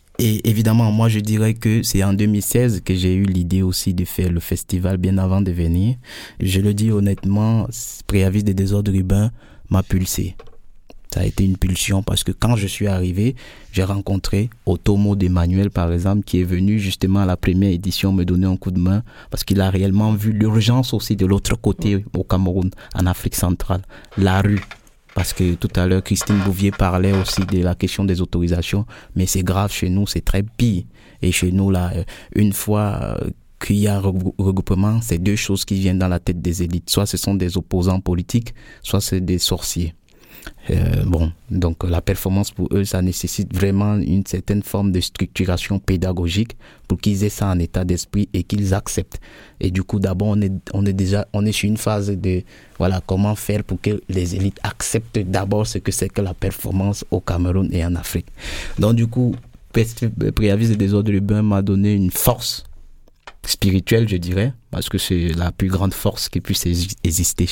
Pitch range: 90-105 Hz